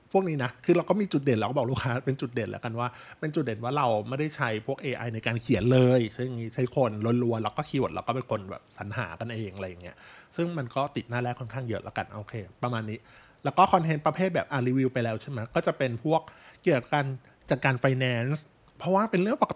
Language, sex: Thai, male